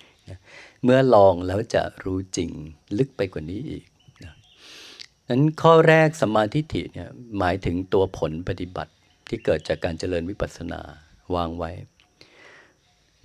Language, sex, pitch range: Thai, male, 90-125 Hz